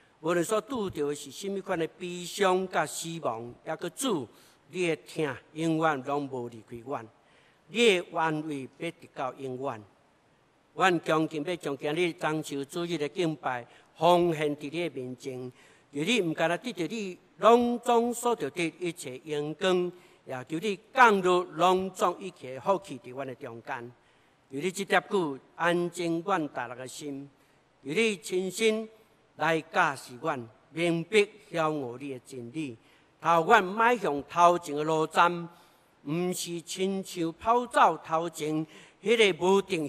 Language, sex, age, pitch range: Chinese, male, 60-79, 140-185 Hz